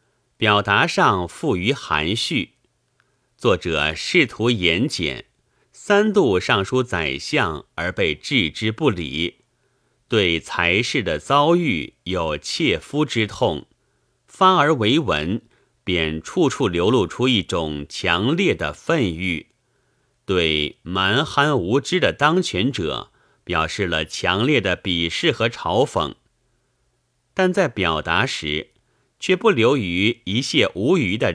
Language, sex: Chinese, male